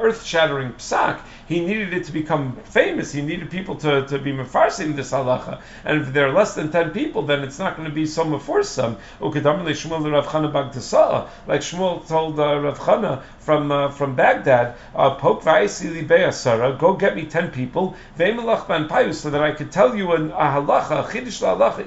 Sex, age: male, 40-59